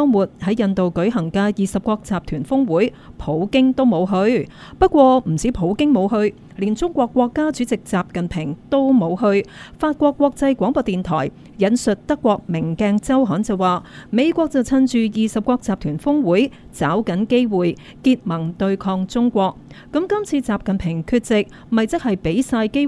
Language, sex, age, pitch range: Chinese, female, 30-49, 185-260 Hz